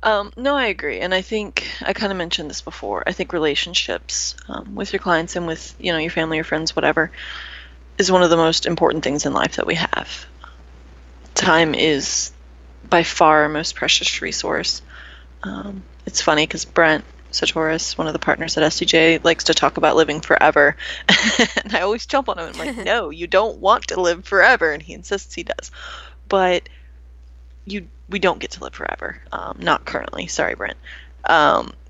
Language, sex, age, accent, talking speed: English, female, 20-39, American, 190 wpm